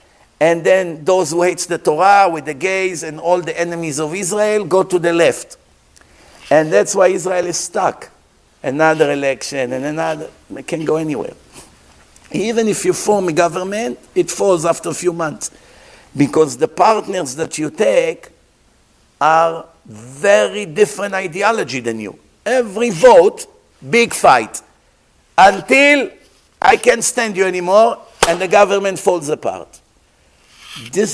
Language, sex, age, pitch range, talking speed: English, male, 50-69, 160-210 Hz, 145 wpm